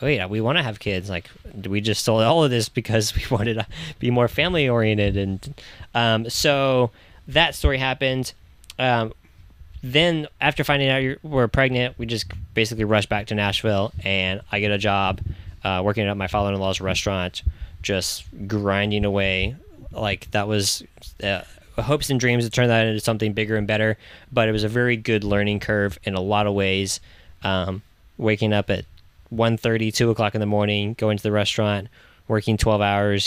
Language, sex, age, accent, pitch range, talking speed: English, male, 10-29, American, 100-125 Hz, 185 wpm